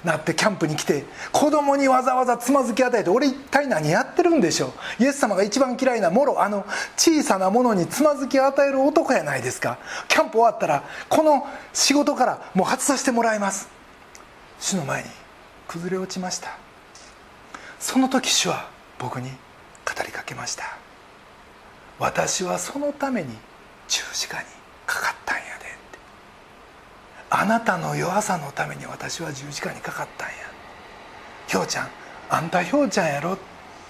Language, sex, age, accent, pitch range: Japanese, male, 40-59, native, 210-285 Hz